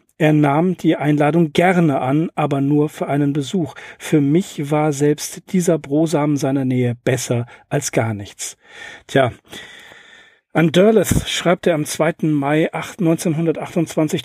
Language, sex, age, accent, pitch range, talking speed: German, male, 40-59, German, 130-165 Hz, 135 wpm